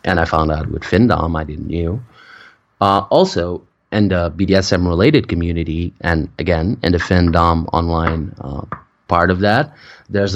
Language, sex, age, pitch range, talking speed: English, male, 20-39, 85-105 Hz, 150 wpm